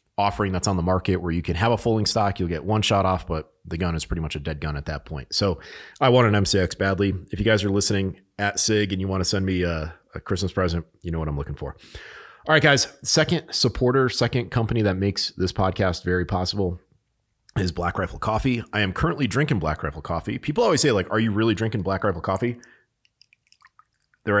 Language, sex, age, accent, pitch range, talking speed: English, male, 30-49, American, 85-105 Hz, 230 wpm